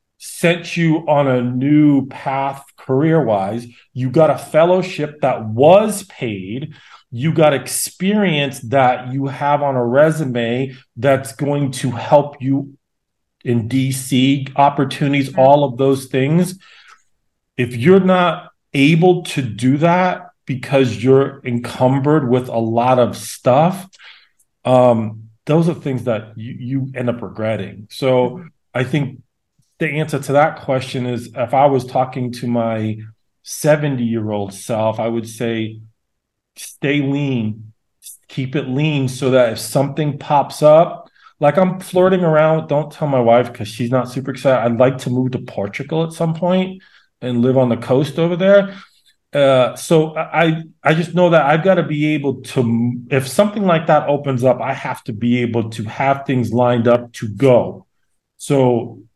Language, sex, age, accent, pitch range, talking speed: English, male, 40-59, American, 120-150 Hz, 155 wpm